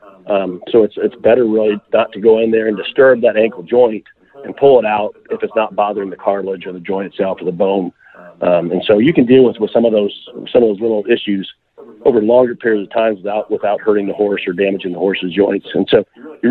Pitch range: 95-110 Hz